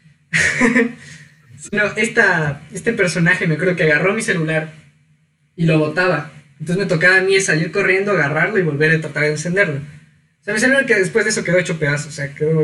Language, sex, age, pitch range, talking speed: Spanish, male, 20-39, 155-205 Hz, 195 wpm